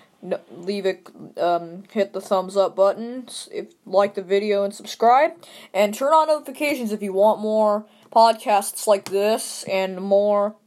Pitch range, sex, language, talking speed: 195-250 Hz, female, English, 155 wpm